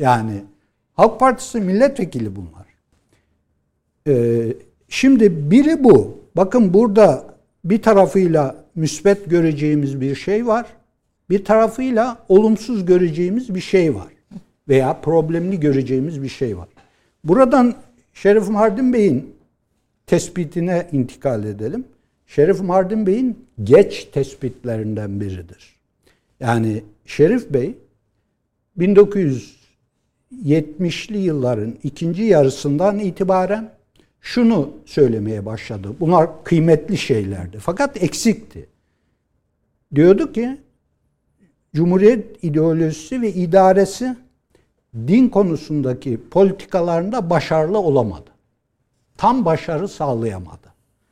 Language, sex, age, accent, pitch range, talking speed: Turkish, male, 60-79, native, 125-210 Hz, 90 wpm